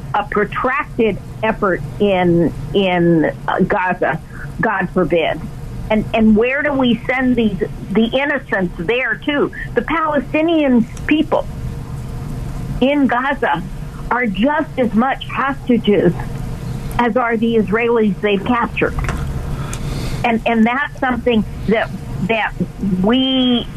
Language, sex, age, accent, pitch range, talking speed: English, female, 50-69, American, 185-235 Hz, 110 wpm